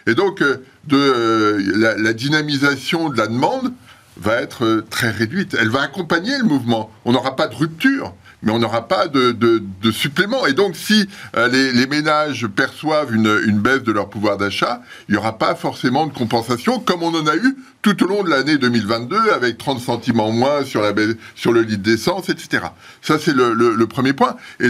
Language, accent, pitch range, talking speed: French, French, 110-180 Hz, 200 wpm